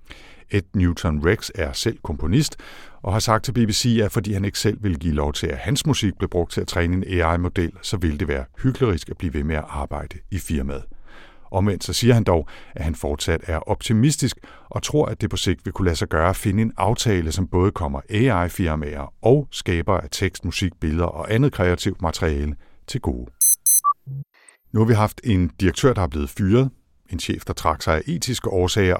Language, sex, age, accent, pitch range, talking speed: Danish, male, 60-79, native, 80-110 Hz, 210 wpm